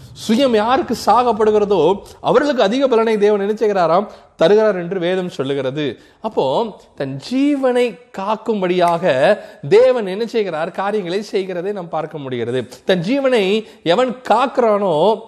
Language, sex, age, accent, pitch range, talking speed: Tamil, male, 30-49, native, 170-230 Hz, 105 wpm